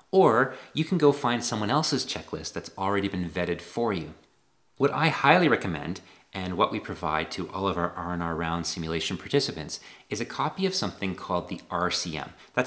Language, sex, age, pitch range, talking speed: English, male, 30-49, 85-120 Hz, 190 wpm